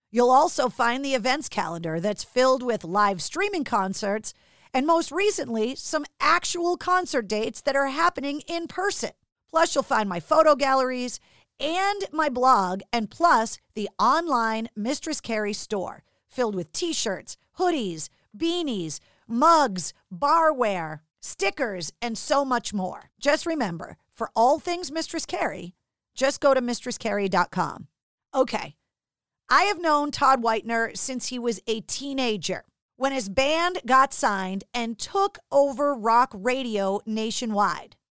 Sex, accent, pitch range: female, American, 210-295 Hz